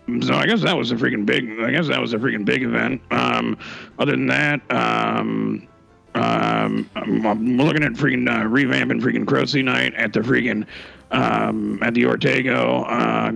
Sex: male